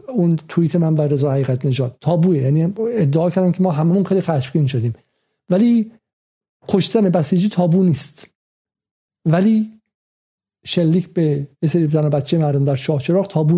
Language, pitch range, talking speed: Persian, 145-180 Hz, 140 wpm